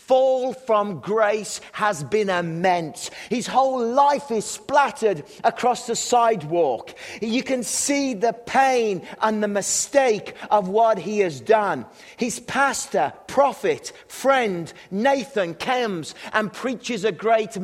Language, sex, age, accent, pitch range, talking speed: English, male, 40-59, British, 180-235 Hz, 125 wpm